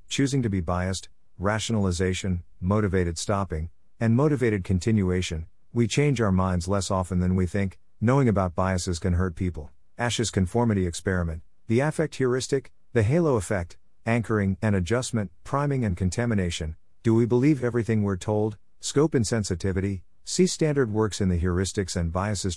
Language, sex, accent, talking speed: English, male, American, 150 wpm